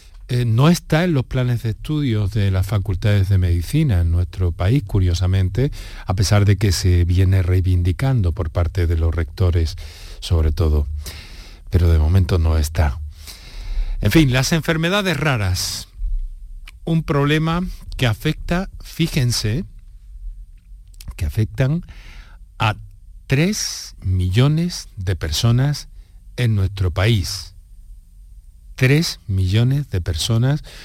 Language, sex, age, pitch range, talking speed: Spanish, male, 50-69, 90-130 Hz, 115 wpm